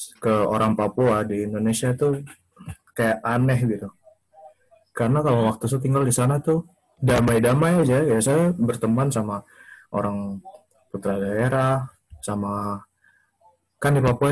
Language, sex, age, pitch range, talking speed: English, male, 20-39, 105-130 Hz, 120 wpm